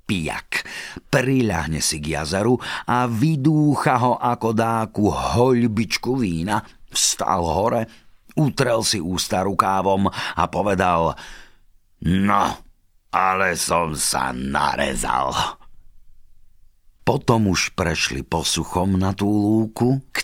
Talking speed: 95 wpm